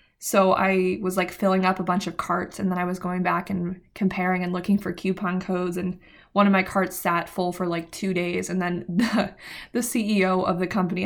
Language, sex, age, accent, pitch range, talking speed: English, female, 20-39, American, 180-210 Hz, 230 wpm